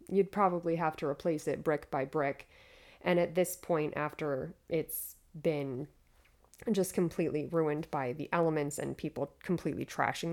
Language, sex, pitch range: English, female, 155-195 Hz